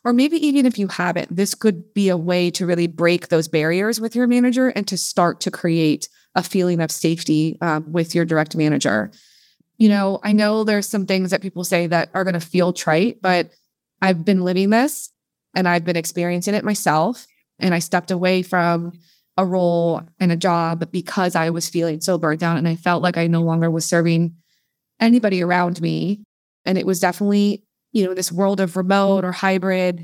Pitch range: 170-200 Hz